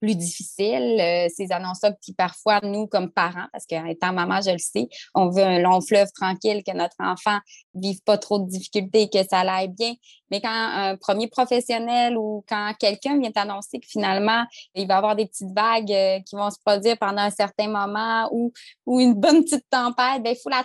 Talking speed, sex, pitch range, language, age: 205 wpm, female, 190-230 Hz, French, 20-39